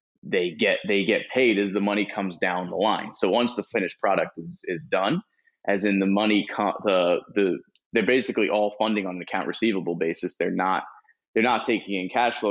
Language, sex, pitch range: English, male, 95-110 Hz